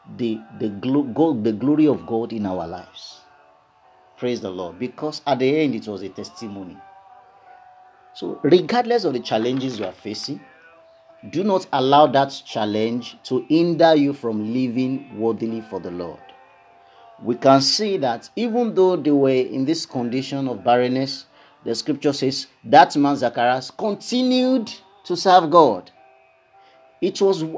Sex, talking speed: male, 150 wpm